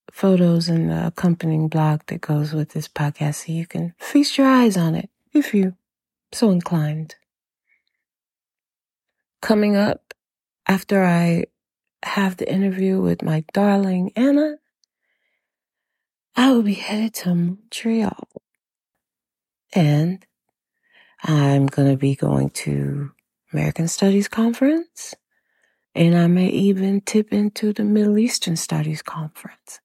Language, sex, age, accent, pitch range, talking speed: English, female, 30-49, American, 155-225 Hz, 120 wpm